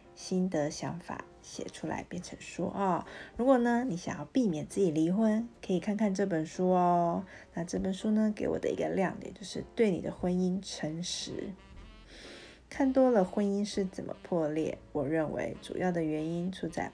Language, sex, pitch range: Chinese, female, 165-205 Hz